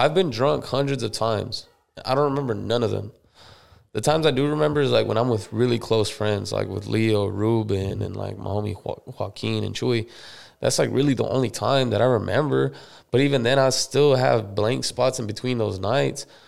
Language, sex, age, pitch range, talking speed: English, male, 20-39, 105-135 Hz, 210 wpm